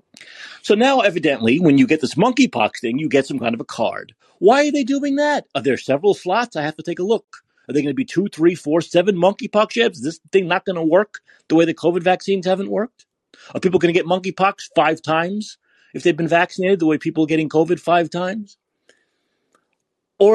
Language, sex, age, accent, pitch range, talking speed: English, male, 30-49, American, 155-215 Hz, 225 wpm